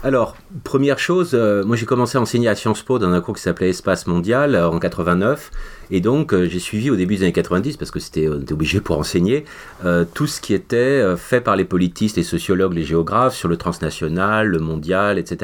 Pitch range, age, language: 85-105 Hz, 40-59, English